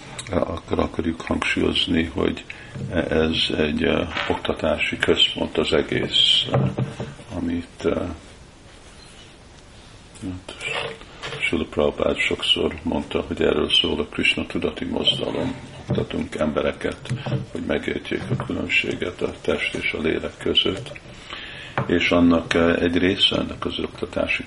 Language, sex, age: Hungarian, male, 50-69